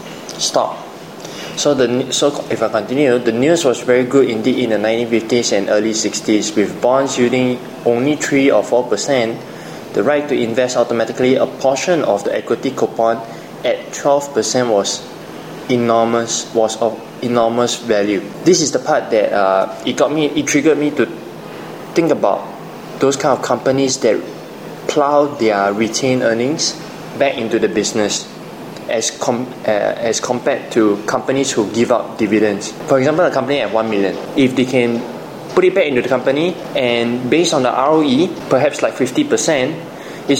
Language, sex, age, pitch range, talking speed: English, male, 20-39, 115-140 Hz, 170 wpm